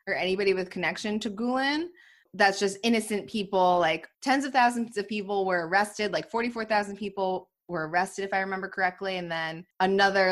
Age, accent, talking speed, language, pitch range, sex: 20-39, American, 175 wpm, English, 180-220 Hz, female